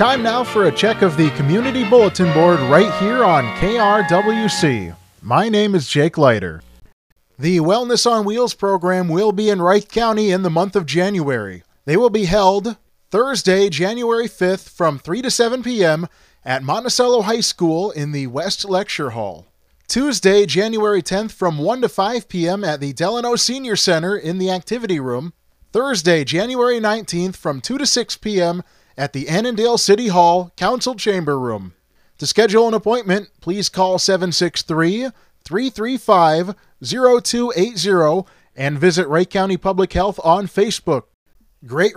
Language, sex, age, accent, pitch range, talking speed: English, male, 30-49, American, 170-225 Hz, 150 wpm